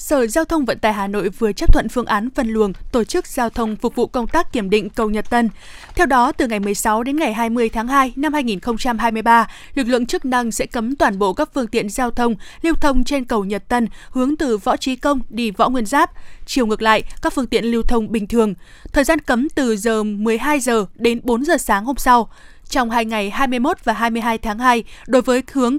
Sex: female